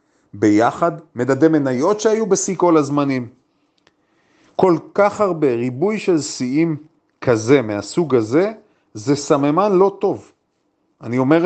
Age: 40-59